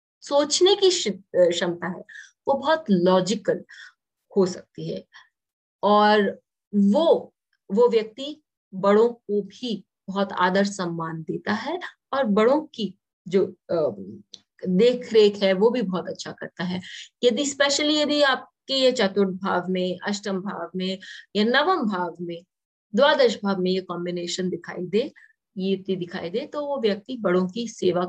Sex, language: female, English